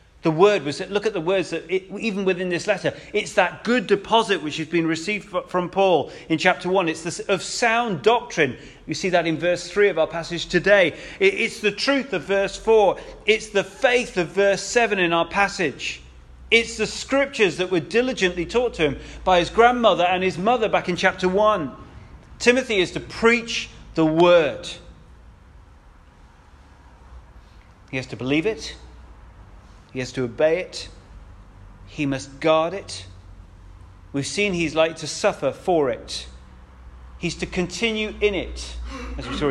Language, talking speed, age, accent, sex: English, 170 wpm, 30-49, British, male